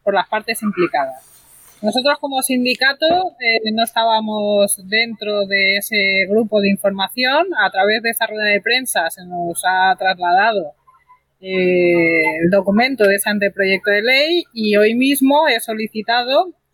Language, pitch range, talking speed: Spanish, 195-255 Hz, 145 wpm